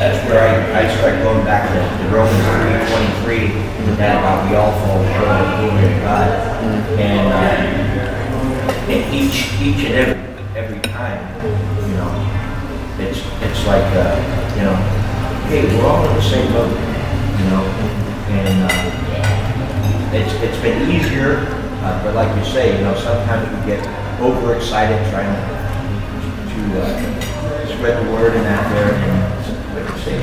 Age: 30-49